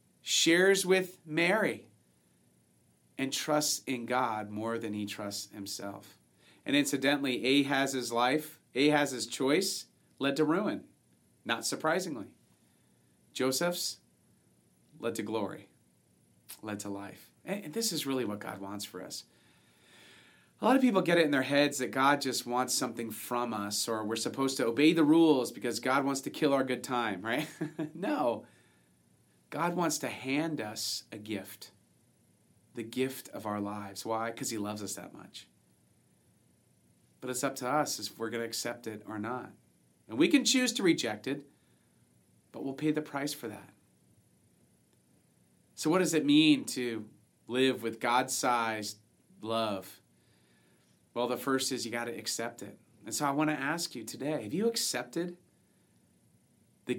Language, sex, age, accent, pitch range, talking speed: English, male, 40-59, American, 105-150 Hz, 155 wpm